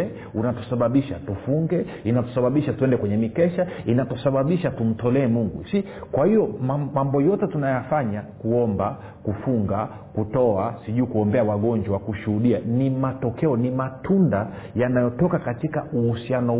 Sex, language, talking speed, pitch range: male, Swahili, 105 wpm, 115-150 Hz